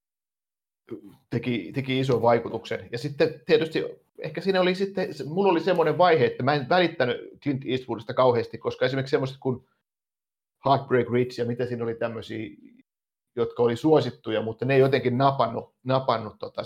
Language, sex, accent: Finnish, male, native